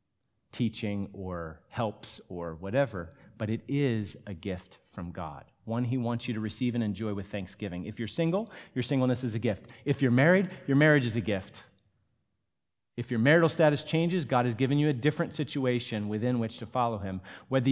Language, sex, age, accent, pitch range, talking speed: English, male, 30-49, American, 105-145 Hz, 190 wpm